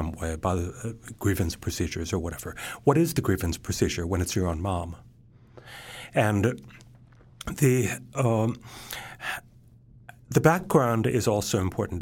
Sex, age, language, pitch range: male, 60-79, English, 95-125 Hz